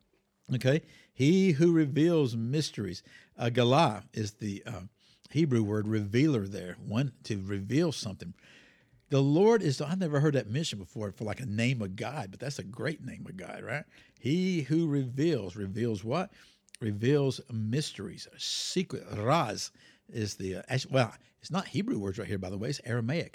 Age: 60-79